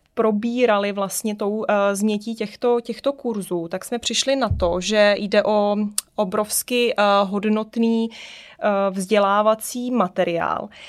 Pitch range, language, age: 205-235 Hz, Czech, 20-39